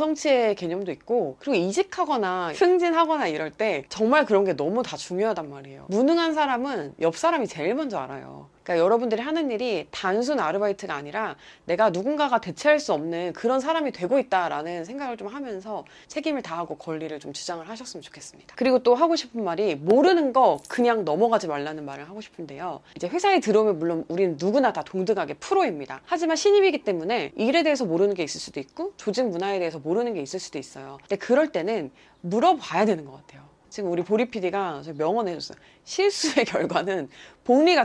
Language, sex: Korean, female